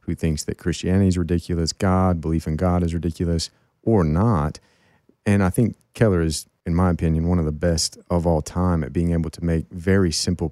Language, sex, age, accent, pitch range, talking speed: English, male, 30-49, American, 80-90 Hz, 205 wpm